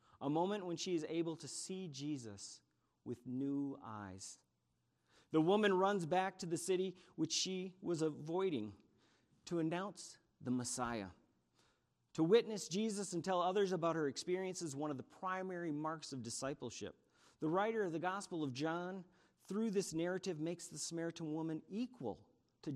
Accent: American